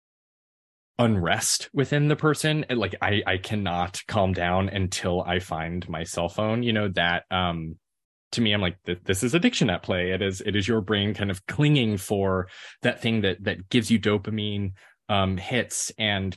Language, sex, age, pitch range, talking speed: English, male, 20-39, 90-115 Hz, 185 wpm